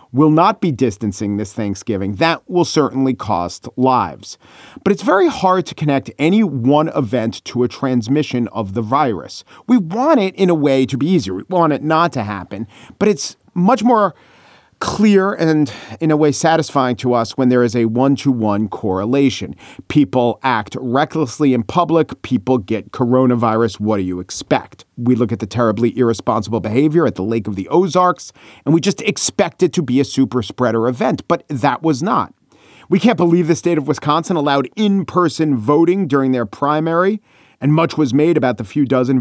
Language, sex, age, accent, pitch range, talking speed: English, male, 40-59, American, 125-170 Hz, 185 wpm